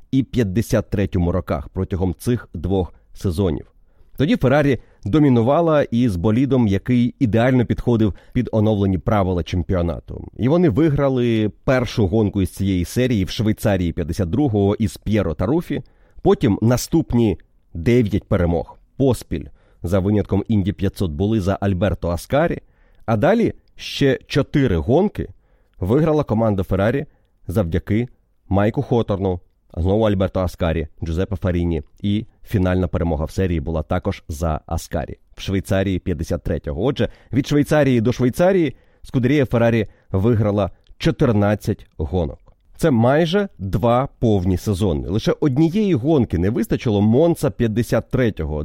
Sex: male